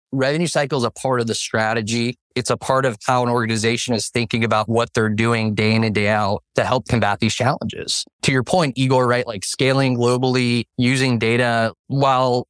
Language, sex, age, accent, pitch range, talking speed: English, male, 20-39, American, 110-130 Hz, 200 wpm